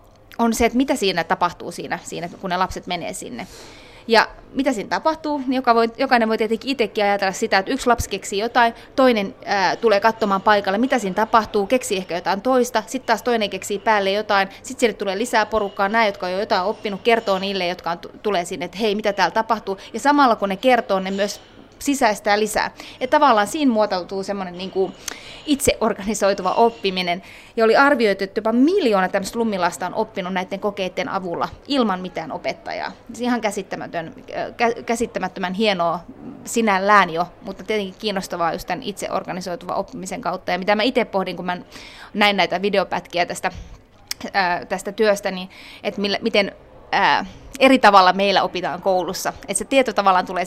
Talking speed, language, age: 170 wpm, Finnish, 20-39